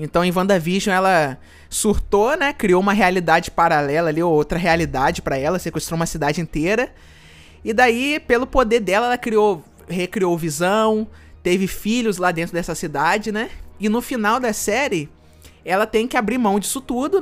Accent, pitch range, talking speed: Brazilian, 170-230 Hz, 165 wpm